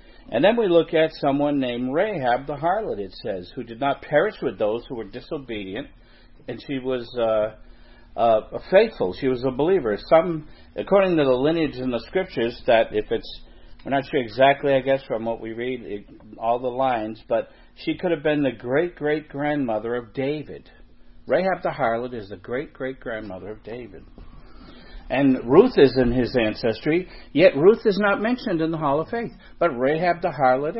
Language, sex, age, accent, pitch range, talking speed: English, male, 50-69, American, 120-165 Hz, 180 wpm